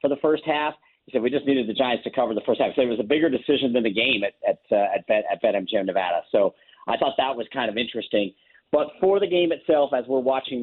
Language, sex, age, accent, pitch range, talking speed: English, male, 40-59, American, 110-140 Hz, 275 wpm